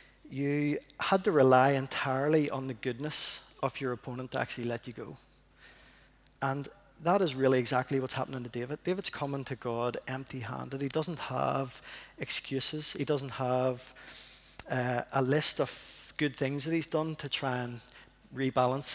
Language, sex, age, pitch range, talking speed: English, male, 30-49, 130-150 Hz, 160 wpm